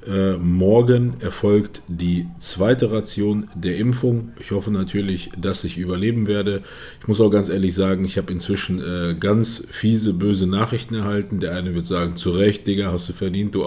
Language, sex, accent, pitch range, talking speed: German, male, German, 95-115 Hz, 170 wpm